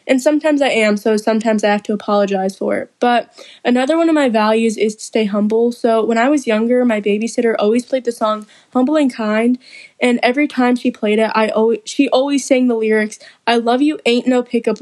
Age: 10-29